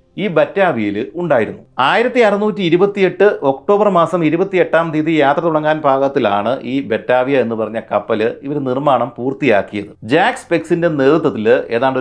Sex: male